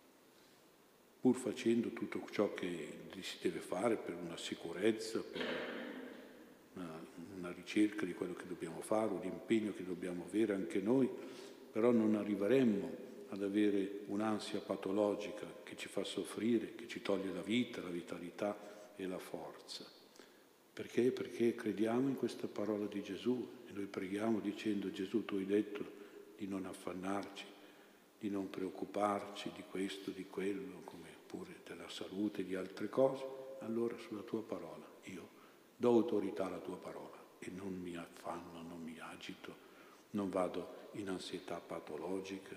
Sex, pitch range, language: male, 95-110 Hz, Italian